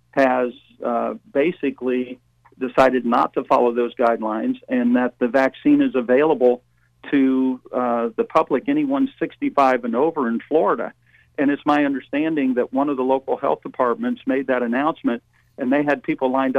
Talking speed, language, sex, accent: 160 wpm, English, male, American